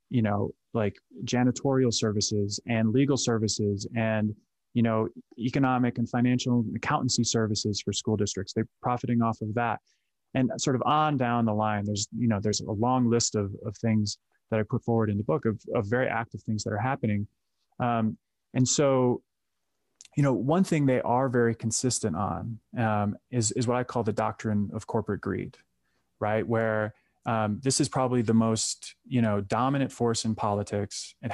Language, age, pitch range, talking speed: English, 20-39, 105-120 Hz, 180 wpm